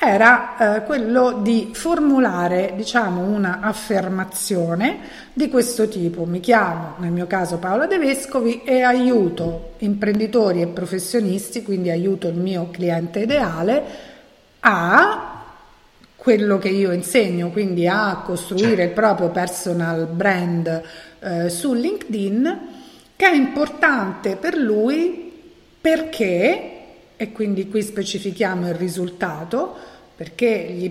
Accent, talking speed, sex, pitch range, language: native, 115 wpm, female, 185-250 Hz, Italian